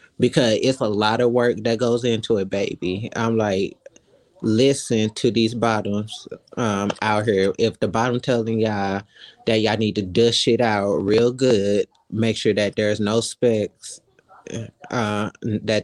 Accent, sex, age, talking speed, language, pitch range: American, male, 20-39, 160 wpm, English, 110-120 Hz